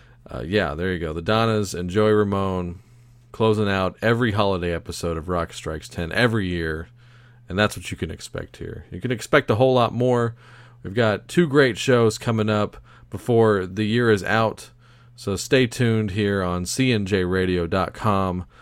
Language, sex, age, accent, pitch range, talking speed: English, male, 40-59, American, 90-115 Hz, 170 wpm